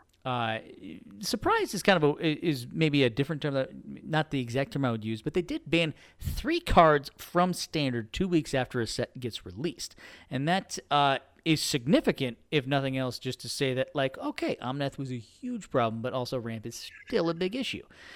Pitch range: 120-155 Hz